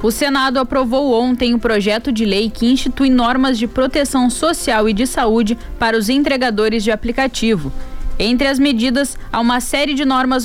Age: 10-29